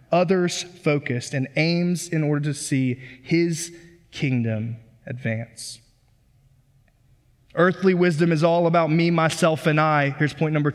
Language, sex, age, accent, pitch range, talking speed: English, male, 20-39, American, 125-170 Hz, 130 wpm